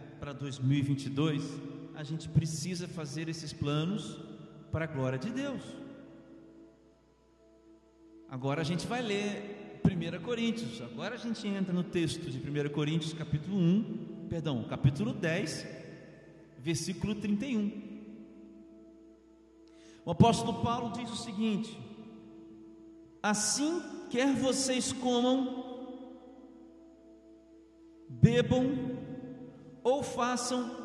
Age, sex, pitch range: 40-59, male, 150-230 Hz